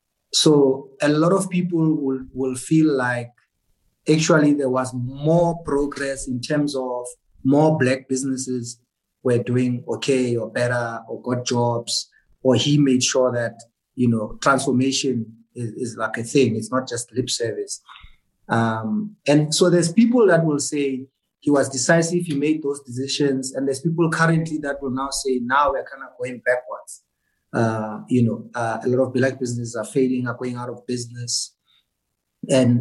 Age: 30-49